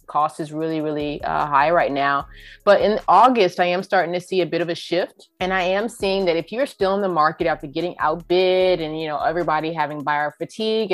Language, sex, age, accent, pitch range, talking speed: English, female, 30-49, American, 155-205 Hz, 230 wpm